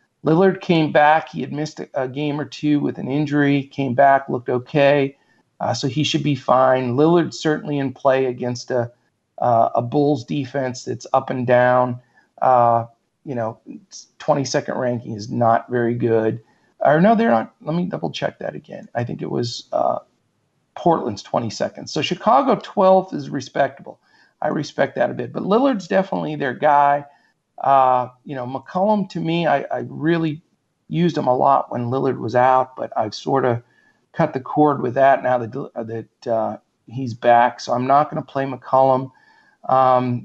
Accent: American